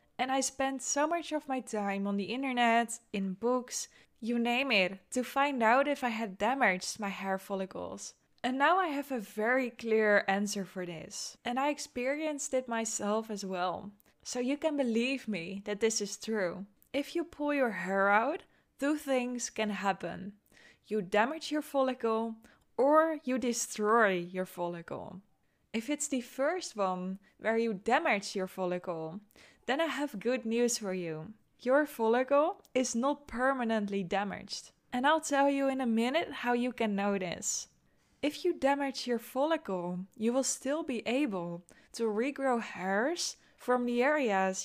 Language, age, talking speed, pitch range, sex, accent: English, 10-29, 165 wpm, 205-270 Hz, female, Dutch